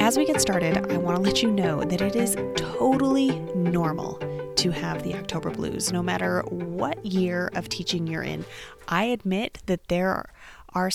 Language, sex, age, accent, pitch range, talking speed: English, female, 30-49, American, 175-240 Hz, 175 wpm